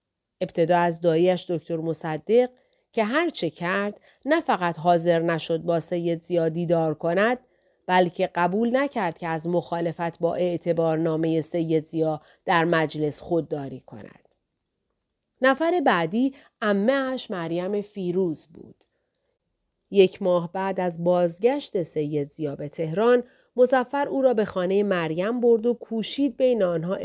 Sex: female